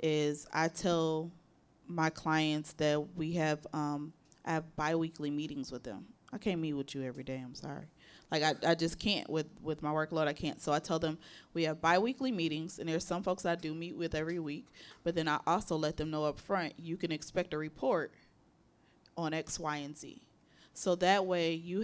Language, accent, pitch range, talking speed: English, American, 150-175 Hz, 210 wpm